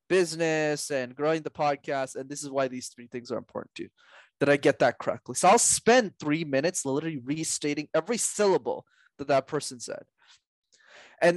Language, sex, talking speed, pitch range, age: English, male, 185 wpm, 140-195 Hz, 20-39